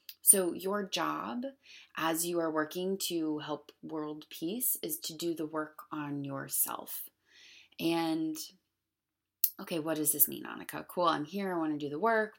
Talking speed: 165 wpm